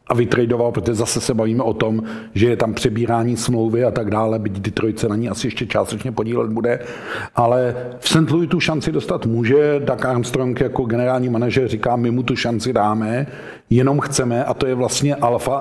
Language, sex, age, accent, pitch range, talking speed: Czech, male, 50-69, native, 120-140 Hz, 200 wpm